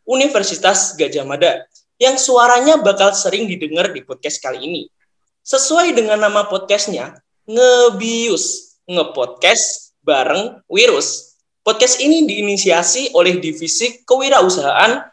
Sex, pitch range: male, 195-270 Hz